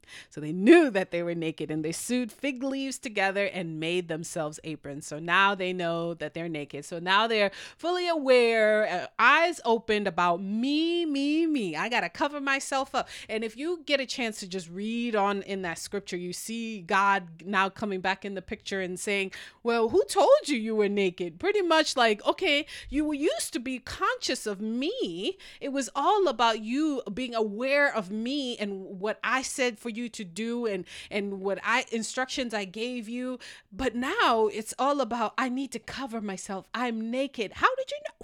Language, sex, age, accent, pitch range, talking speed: English, female, 30-49, American, 195-270 Hz, 195 wpm